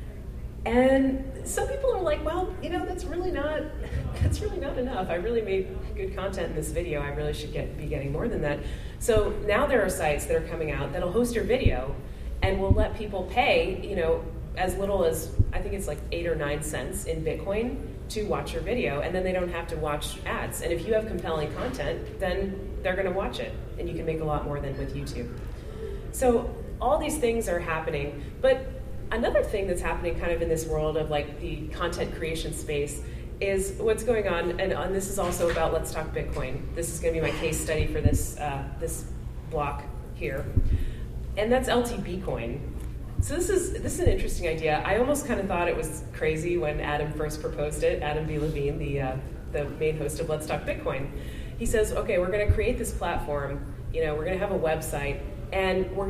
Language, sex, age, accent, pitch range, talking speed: English, female, 30-49, American, 150-210 Hz, 215 wpm